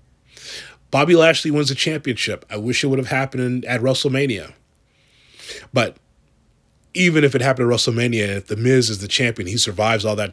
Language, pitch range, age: English, 115-145 Hz, 30-49